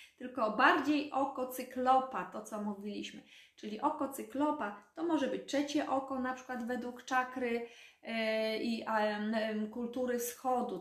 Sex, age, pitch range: female, 20-39, 220-270 Hz